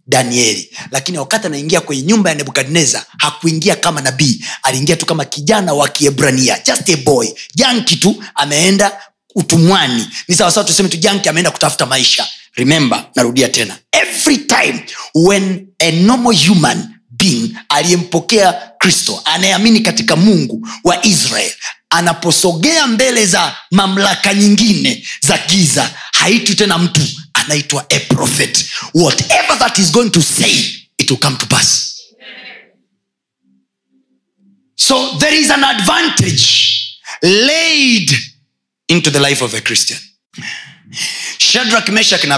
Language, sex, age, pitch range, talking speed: Swahili, male, 30-49, 140-200 Hz, 125 wpm